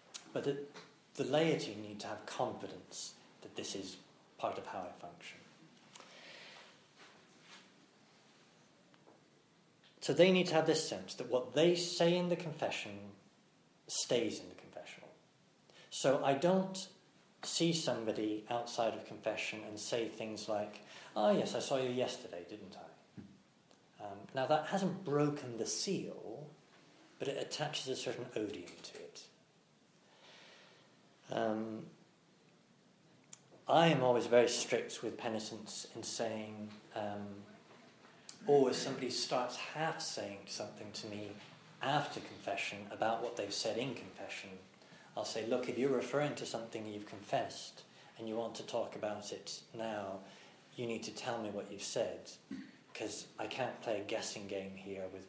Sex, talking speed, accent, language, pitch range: male, 145 wpm, British, English, 105-155 Hz